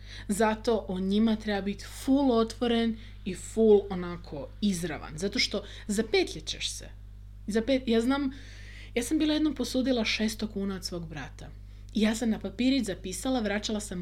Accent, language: native, Croatian